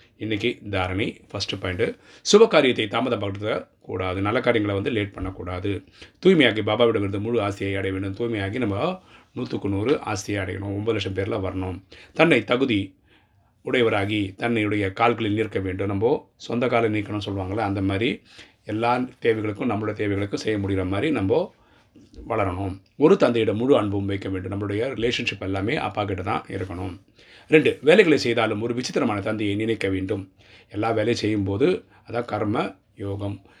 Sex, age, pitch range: male, 30-49, 95-115 Hz